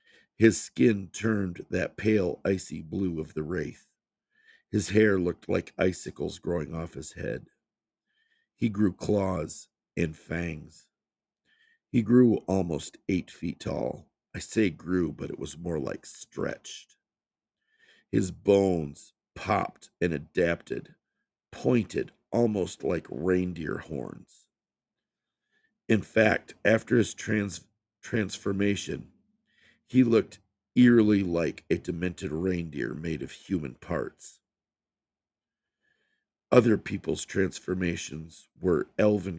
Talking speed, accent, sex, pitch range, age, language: 105 wpm, American, male, 85-110 Hz, 50-69, English